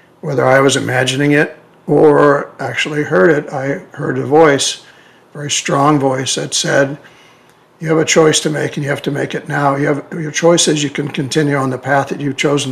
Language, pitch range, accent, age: English, 140-165 Hz, American, 60-79